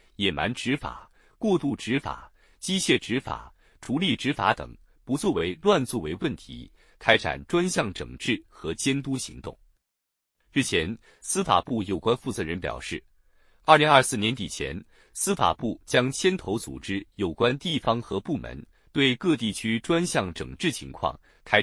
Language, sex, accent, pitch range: Chinese, male, native, 100-145 Hz